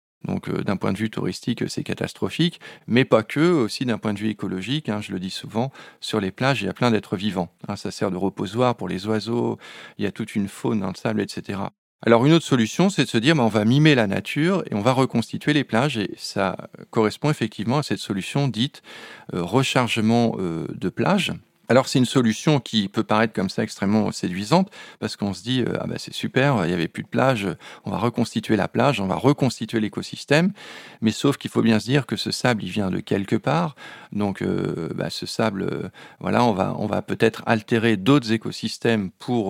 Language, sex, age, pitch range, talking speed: French, male, 40-59, 105-130 Hz, 225 wpm